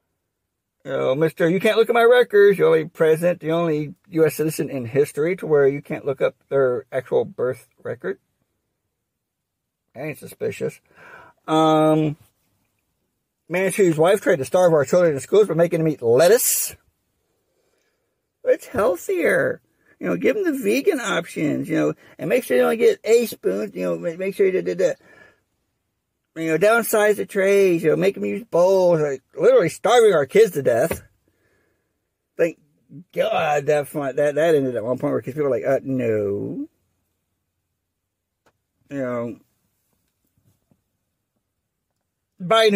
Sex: male